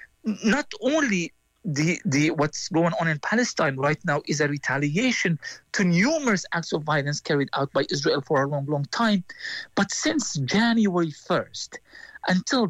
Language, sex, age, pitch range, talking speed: English, male, 50-69, 155-220 Hz, 160 wpm